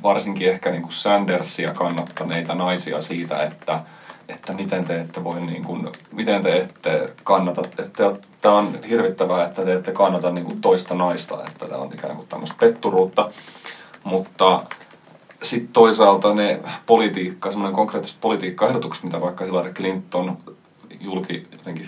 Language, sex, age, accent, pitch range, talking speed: Finnish, male, 30-49, native, 85-95 Hz, 130 wpm